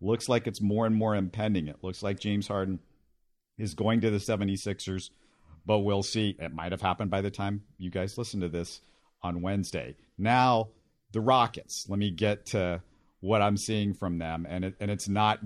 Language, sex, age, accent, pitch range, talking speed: English, male, 50-69, American, 95-120 Hz, 200 wpm